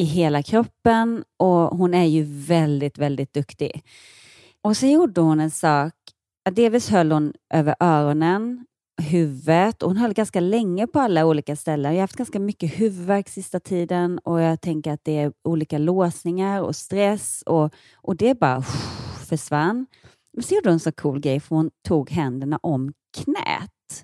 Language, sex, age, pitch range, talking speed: Swedish, female, 30-49, 145-200 Hz, 170 wpm